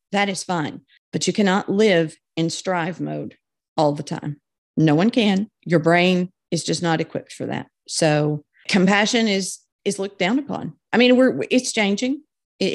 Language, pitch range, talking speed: English, 165-200 Hz, 175 wpm